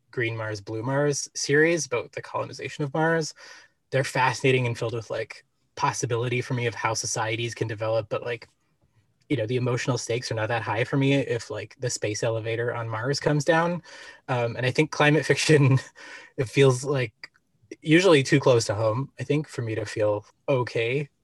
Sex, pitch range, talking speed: male, 120-145 Hz, 190 wpm